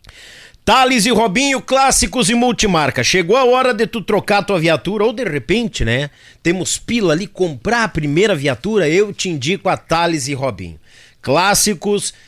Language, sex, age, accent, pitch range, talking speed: Portuguese, male, 50-69, Brazilian, 145-200 Hz, 160 wpm